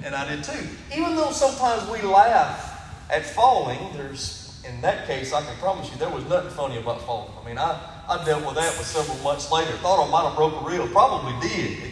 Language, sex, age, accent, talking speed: English, male, 40-59, American, 220 wpm